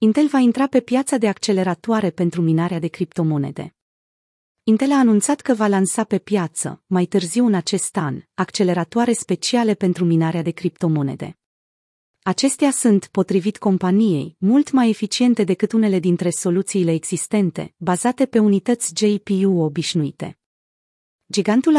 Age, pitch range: 30-49, 175-220 Hz